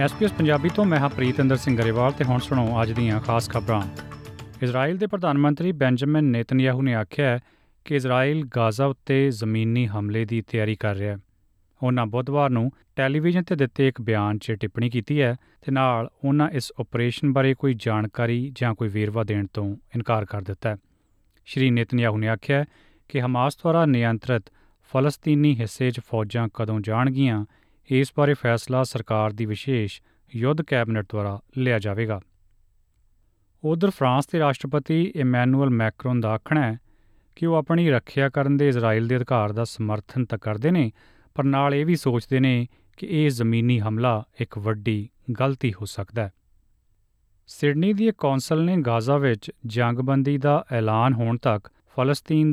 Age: 30-49